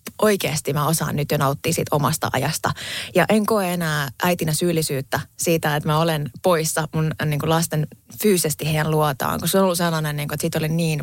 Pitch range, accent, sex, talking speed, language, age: 150-175 Hz, native, female, 205 wpm, Finnish, 20-39